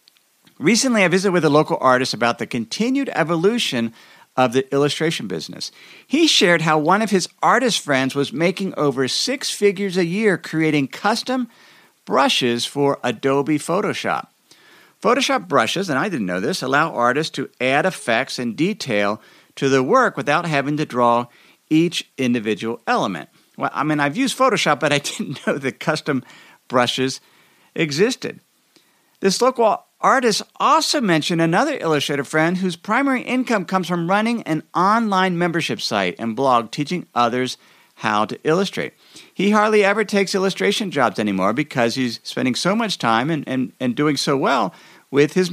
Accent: American